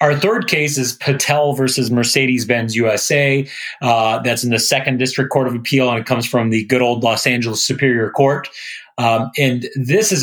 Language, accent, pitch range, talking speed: English, American, 125-150 Hz, 190 wpm